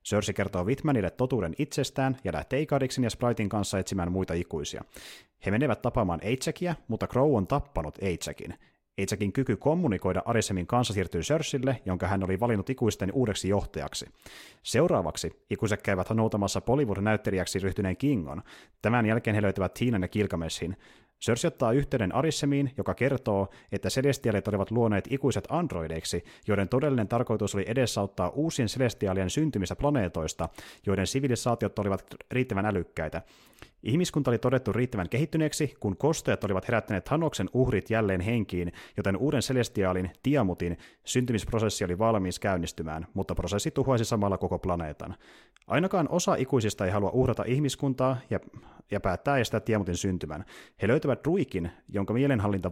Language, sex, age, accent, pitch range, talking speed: Finnish, male, 30-49, native, 95-130 Hz, 140 wpm